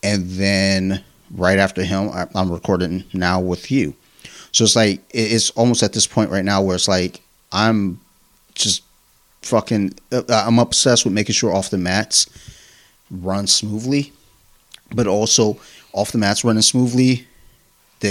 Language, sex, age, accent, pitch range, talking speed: English, male, 30-49, American, 90-110 Hz, 145 wpm